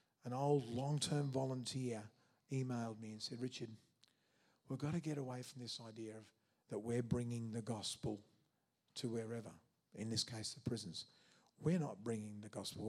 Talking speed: 165 wpm